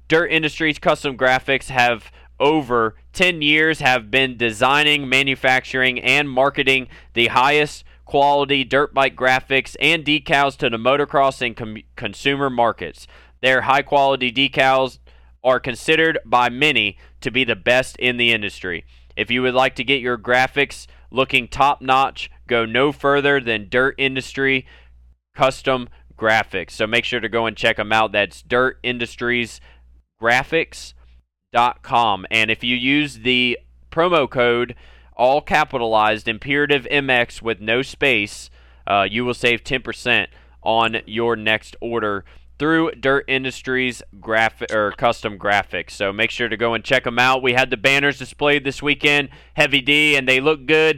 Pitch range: 110-140 Hz